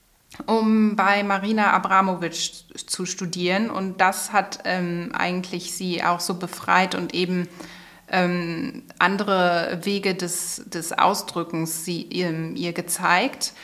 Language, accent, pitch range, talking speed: German, German, 170-195 Hz, 120 wpm